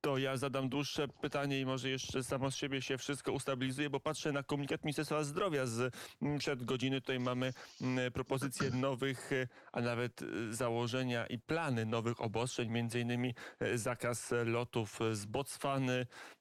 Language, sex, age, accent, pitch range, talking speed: Polish, male, 30-49, native, 125-140 Hz, 140 wpm